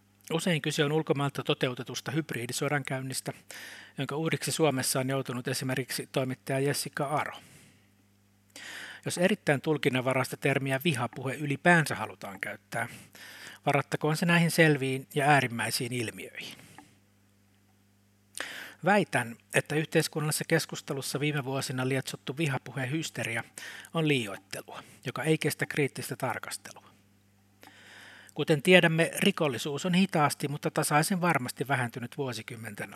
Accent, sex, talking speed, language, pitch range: native, male, 100 wpm, Finnish, 115-150 Hz